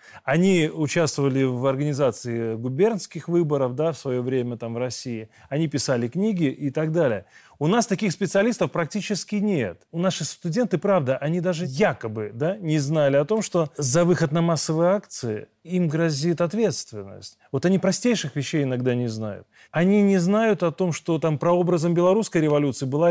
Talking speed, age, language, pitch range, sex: 160 wpm, 30-49, Russian, 140-190 Hz, male